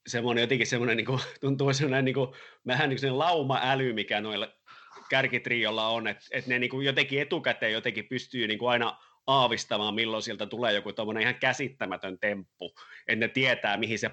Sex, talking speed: male, 155 wpm